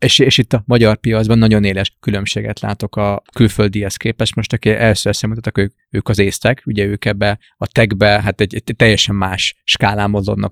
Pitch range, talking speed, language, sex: 100-115 Hz, 190 wpm, Hungarian, male